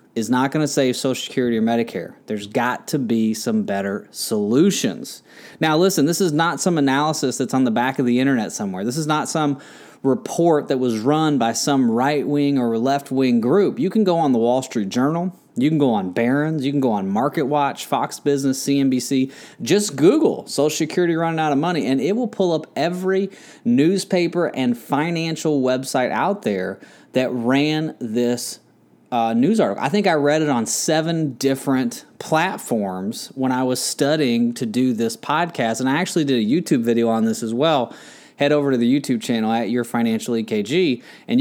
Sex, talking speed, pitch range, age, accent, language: male, 190 wpm, 120-160 Hz, 30-49, American, English